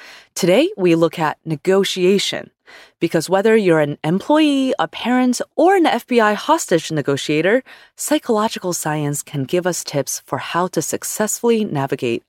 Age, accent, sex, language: 20-39, American, female, English